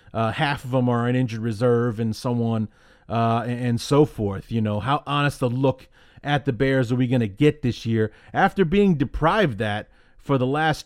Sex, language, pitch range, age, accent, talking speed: male, English, 115-135 Hz, 30-49, American, 220 wpm